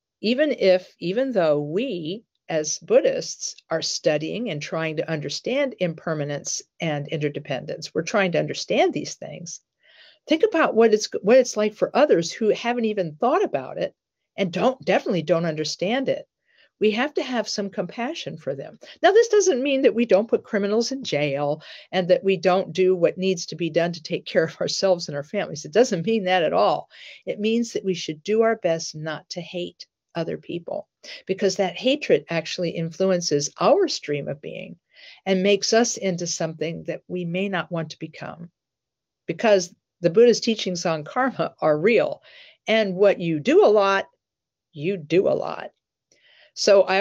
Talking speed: 180 wpm